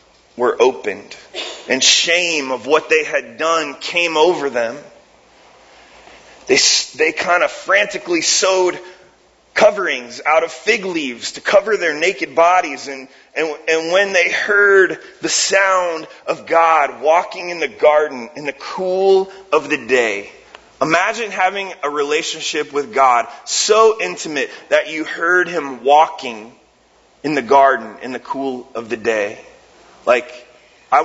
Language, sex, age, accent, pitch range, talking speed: English, male, 30-49, American, 145-215 Hz, 140 wpm